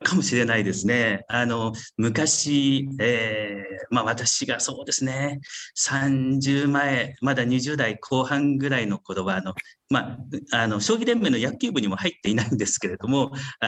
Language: Japanese